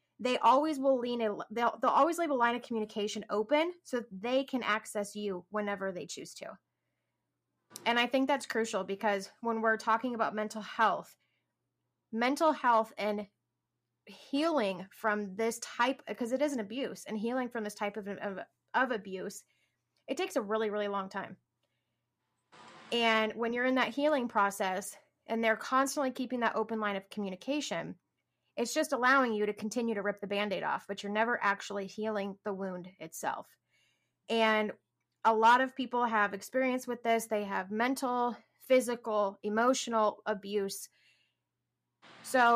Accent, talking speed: American, 160 wpm